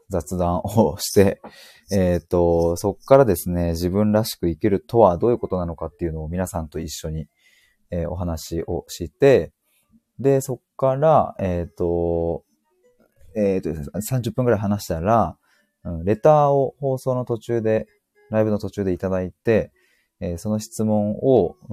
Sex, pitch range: male, 85-130 Hz